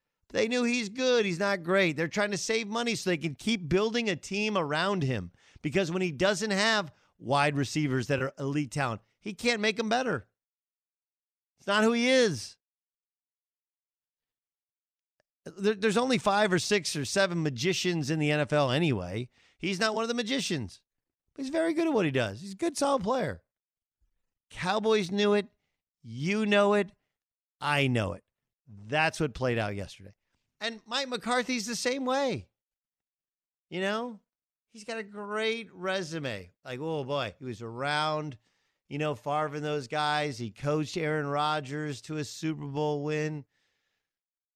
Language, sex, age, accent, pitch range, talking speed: English, male, 40-59, American, 145-210 Hz, 160 wpm